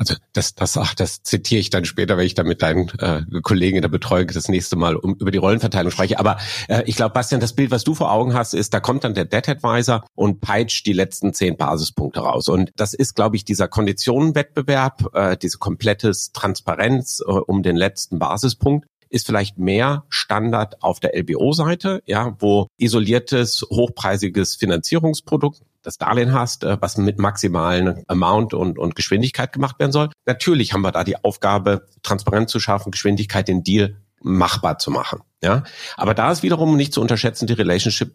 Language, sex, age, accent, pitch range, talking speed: German, male, 50-69, German, 100-125 Hz, 185 wpm